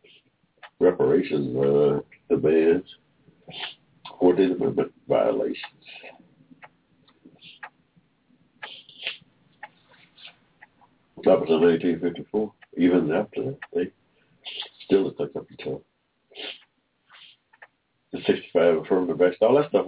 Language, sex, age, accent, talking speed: English, male, 60-79, American, 75 wpm